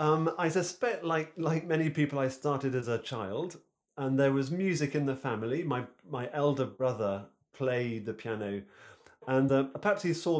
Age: 30-49